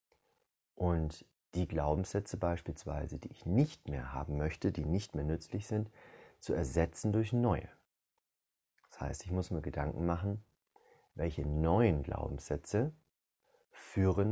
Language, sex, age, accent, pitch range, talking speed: German, male, 30-49, German, 80-105 Hz, 125 wpm